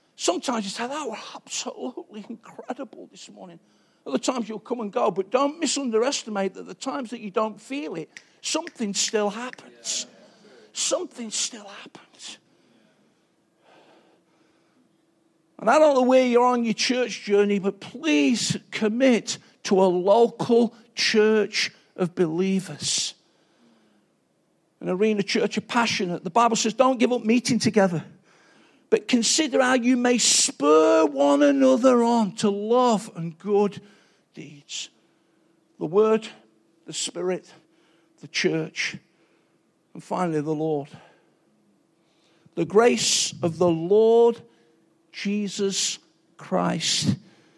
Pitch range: 180-240 Hz